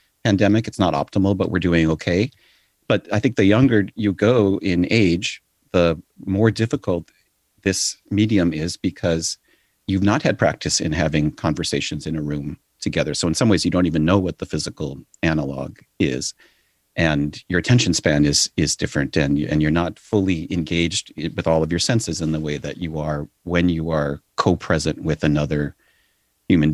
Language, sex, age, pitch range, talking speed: English, male, 40-59, 80-105 Hz, 175 wpm